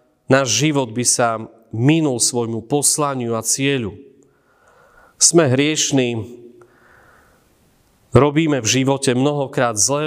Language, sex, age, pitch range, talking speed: Slovak, male, 40-59, 120-145 Hz, 95 wpm